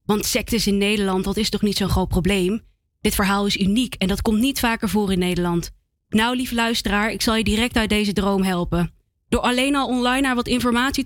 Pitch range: 210-265 Hz